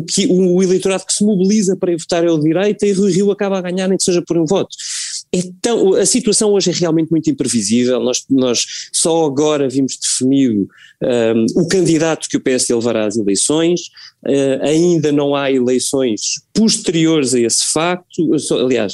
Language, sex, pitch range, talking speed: Portuguese, male, 130-175 Hz, 175 wpm